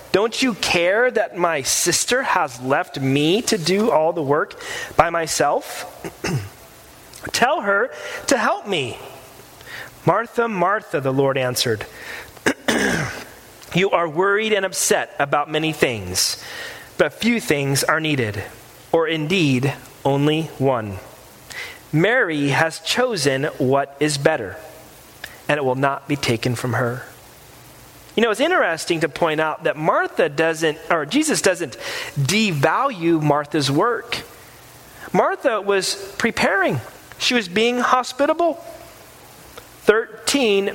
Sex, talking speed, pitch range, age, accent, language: male, 120 wpm, 145-230 Hz, 30-49, American, English